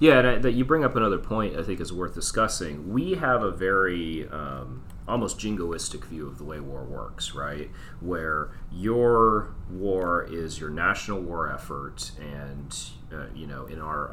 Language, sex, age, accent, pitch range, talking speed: English, male, 30-49, American, 80-110 Hz, 180 wpm